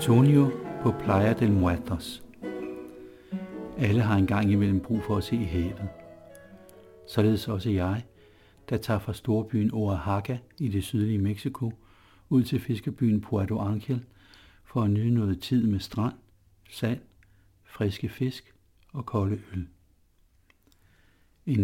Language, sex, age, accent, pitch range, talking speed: Danish, male, 60-79, native, 90-110 Hz, 130 wpm